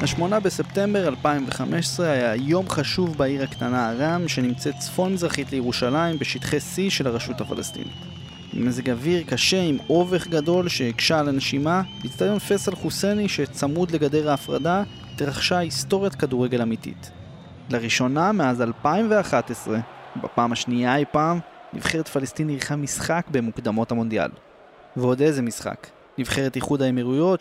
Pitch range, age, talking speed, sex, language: 125-165 Hz, 30-49, 125 wpm, male, Hebrew